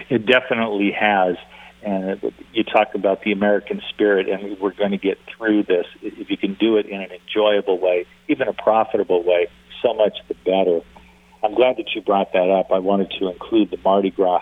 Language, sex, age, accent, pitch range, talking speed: English, male, 50-69, American, 90-110 Hz, 200 wpm